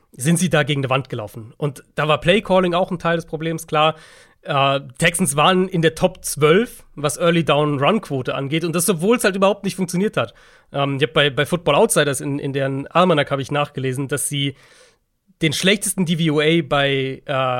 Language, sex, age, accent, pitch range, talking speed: German, male, 40-59, German, 145-180 Hz, 205 wpm